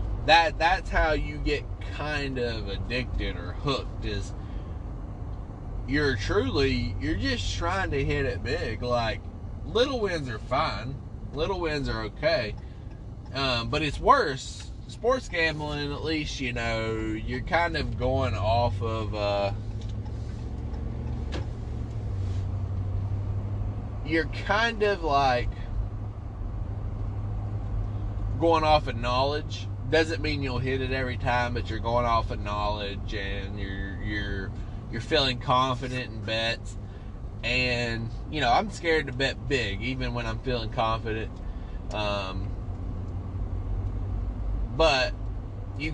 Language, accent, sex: English, American, male